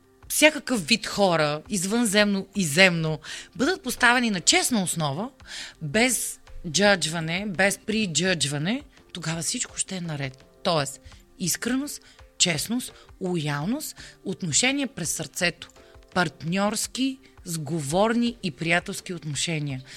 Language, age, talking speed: Bulgarian, 30-49, 100 wpm